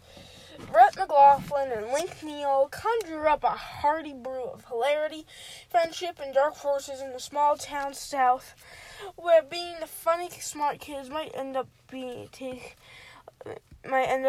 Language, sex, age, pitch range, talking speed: English, female, 10-29, 260-345 Hz, 145 wpm